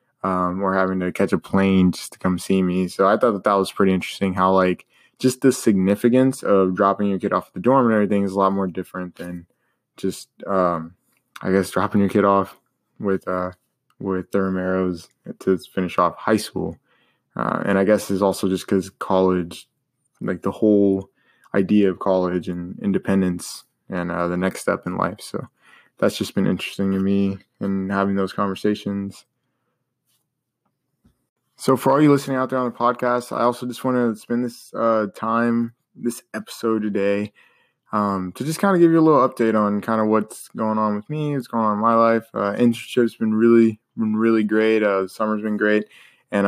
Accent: American